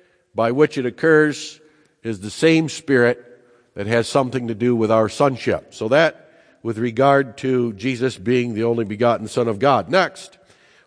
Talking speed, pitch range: 170 wpm, 115-160 Hz